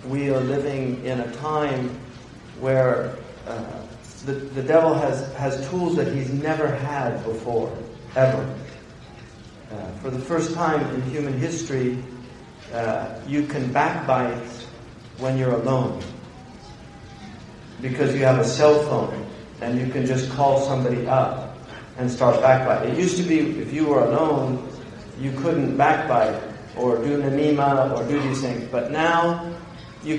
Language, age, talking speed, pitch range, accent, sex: English, 40-59, 145 wpm, 130-155 Hz, American, male